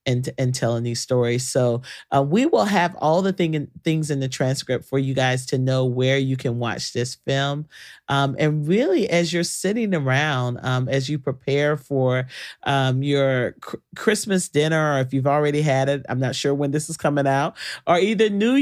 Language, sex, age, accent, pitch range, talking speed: English, male, 40-59, American, 130-165 Hz, 205 wpm